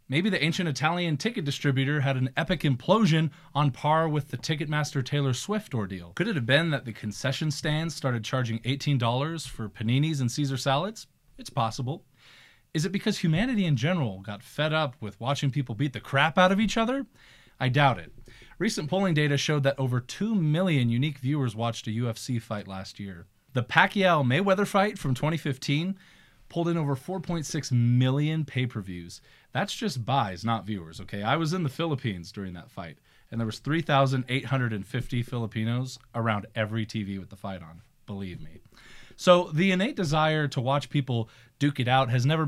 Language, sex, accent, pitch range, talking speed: English, male, American, 120-160 Hz, 175 wpm